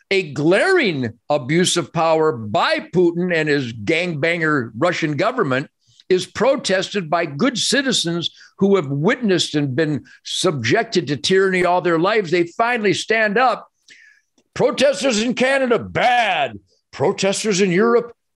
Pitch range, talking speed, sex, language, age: 130-200 Hz, 125 wpm, male, English, 50-69